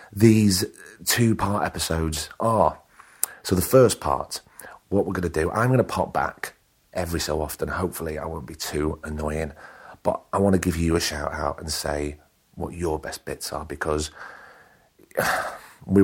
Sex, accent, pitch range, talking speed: male, British, 80-100 Hz, 170 wpm